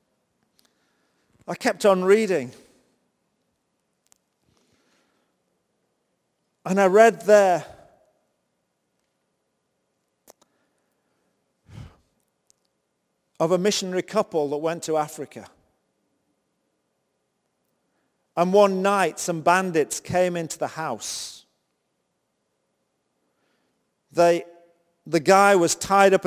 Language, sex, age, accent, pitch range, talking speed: English, male, 50-69, British, 155-195 Hz, 70 wpm